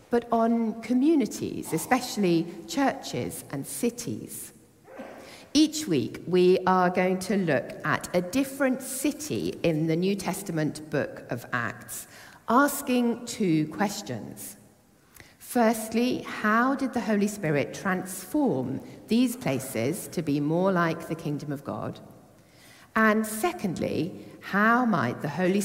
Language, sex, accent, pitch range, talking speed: English, female, British, 160-235 Hz, 120 wpm